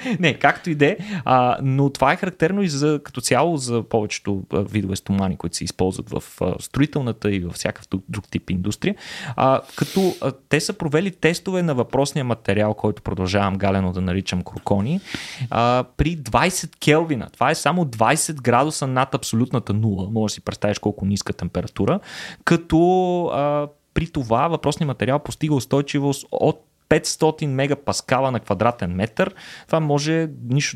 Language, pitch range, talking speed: Bulgarian, 110-155 Hz, 150 wpm